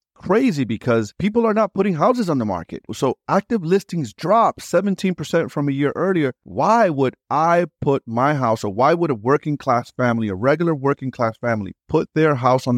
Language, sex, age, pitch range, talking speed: English, male, 30-49, 95-130 Hz, 195 wpm